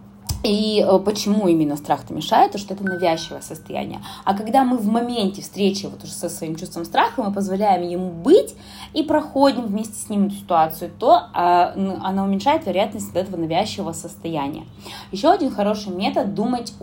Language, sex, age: Russian, female, 20-39